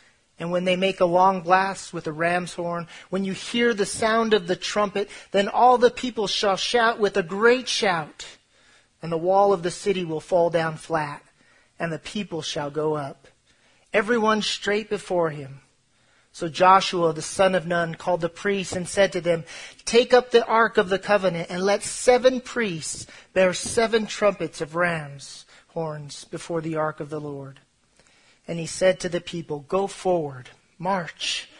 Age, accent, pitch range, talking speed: 40-59, American, 165-215 Hz, 180 wpm